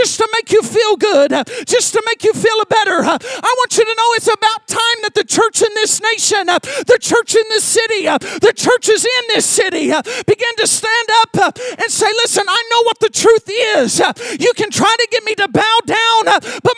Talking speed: 210 wpm